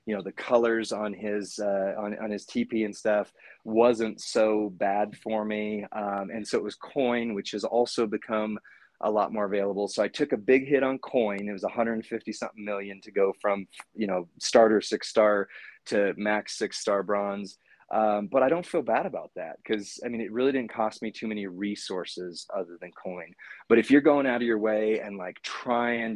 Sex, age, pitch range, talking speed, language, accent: male, 30-49, 100-120 Hz, 210 wpm, English, American